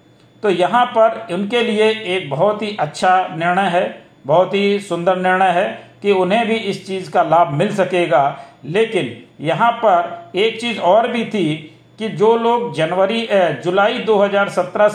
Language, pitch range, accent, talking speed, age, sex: Hindi, 165-210 Hz, native, 155 wpm, 50-69, male